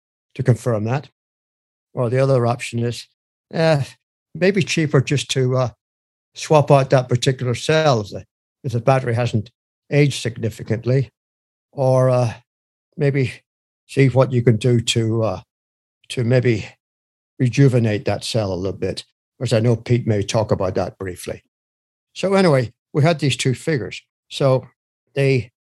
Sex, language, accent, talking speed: male, English, British, 145 wpm